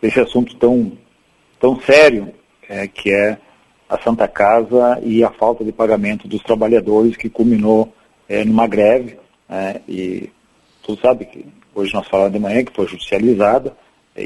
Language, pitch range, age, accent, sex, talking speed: Portuguese, 105-120 Hz, 50-69, Brazilian, male, 155 wpm